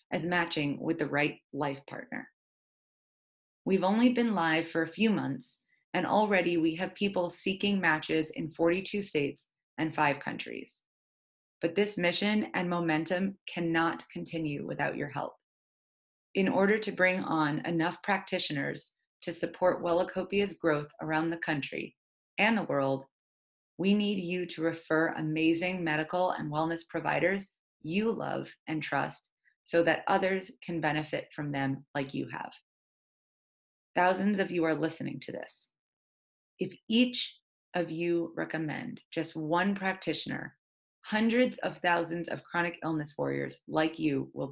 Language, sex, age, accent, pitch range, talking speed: English, female, 30-49, American, 155-185 Hz, 140 wpm